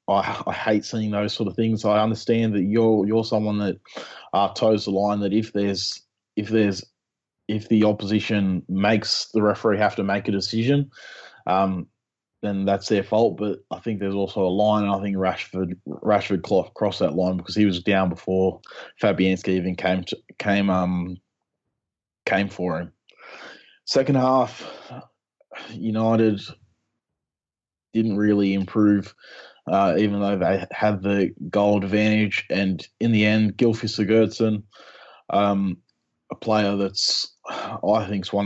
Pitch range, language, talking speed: 95-110 Hz, English, 155 wpm